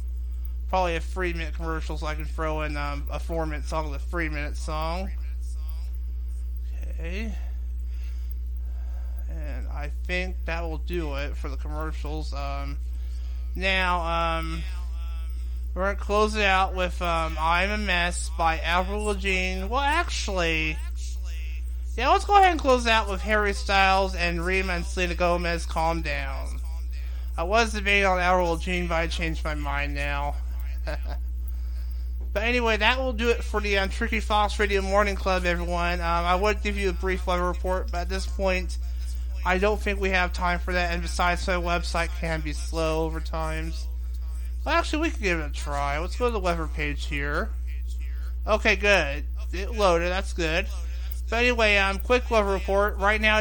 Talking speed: 170 wpm